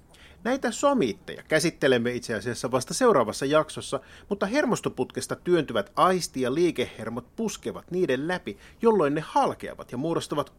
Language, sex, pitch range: Finnish, male, 110-155 Hz